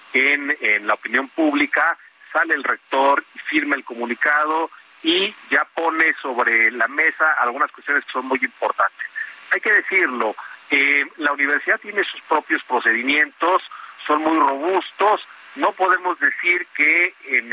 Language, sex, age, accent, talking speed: Spanish, male, 40-59, Mexican, 140 wpm